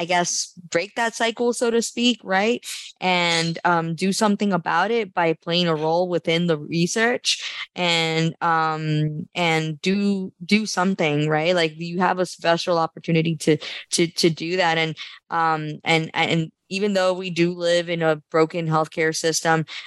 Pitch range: 155-180 Hz